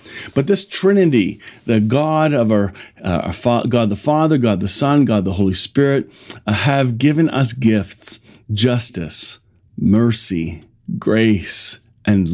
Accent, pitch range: American, 105-125 Hz